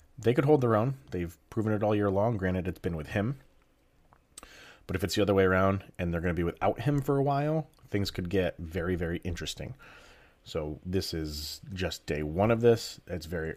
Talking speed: 215 wpm